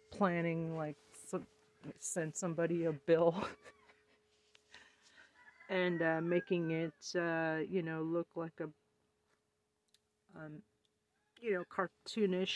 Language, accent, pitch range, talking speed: English, American, 180-225 Hz, 100 wpm